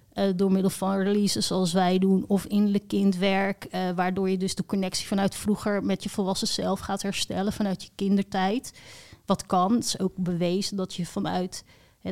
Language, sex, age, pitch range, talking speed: Dutch, female, 30-49, 185-205 Hz, 190 wpm